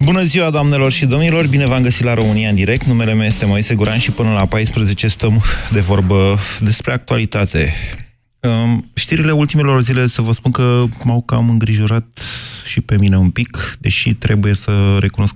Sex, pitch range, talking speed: male, 95-120 Hz, 175 wpm